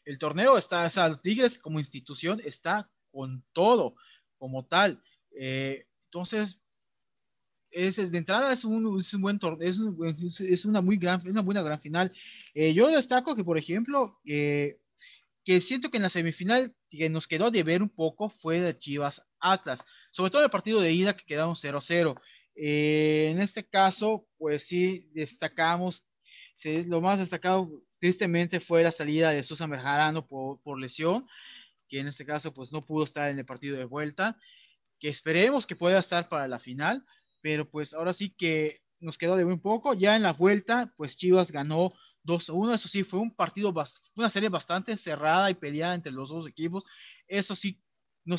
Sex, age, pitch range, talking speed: male, 30-49, 155-195 Hz, 175 wpm